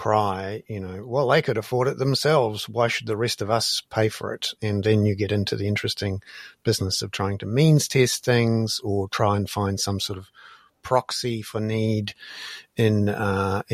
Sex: male